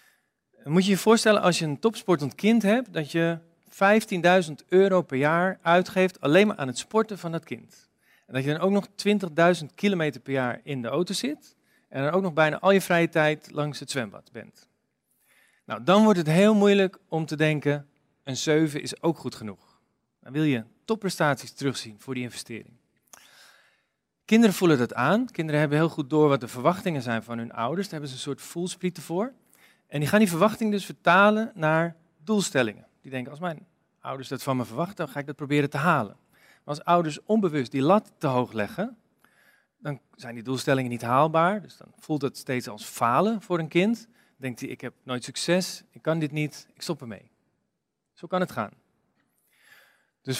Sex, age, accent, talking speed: male, 40-59, Dutch, 200 wpm